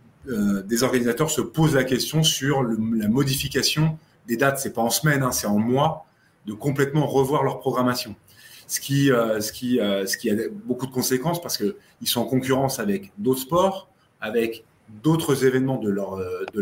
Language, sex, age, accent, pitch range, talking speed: French, male, 30-49, French, 110-140 Hz, 190 wpm